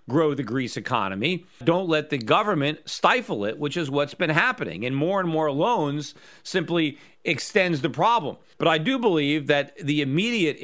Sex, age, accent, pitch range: male, 40-59, American, 135-170 Hz